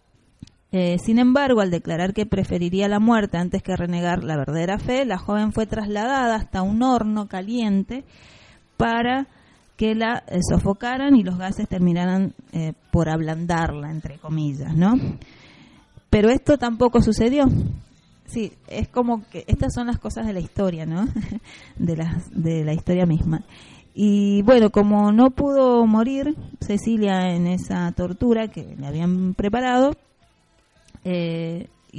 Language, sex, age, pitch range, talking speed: Spanish, female, 30-49, 170-230 Hz, 140 wpm